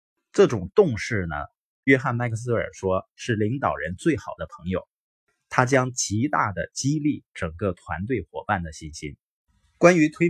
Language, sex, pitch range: Chinese, male, 95-135 Hz